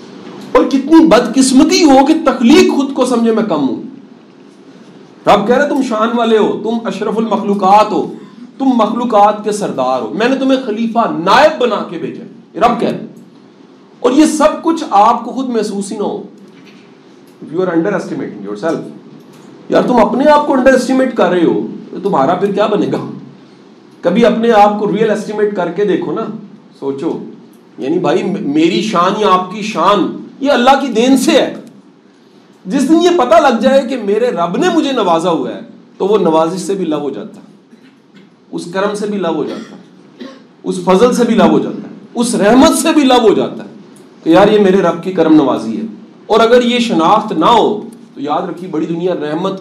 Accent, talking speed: Indian, 180 wpm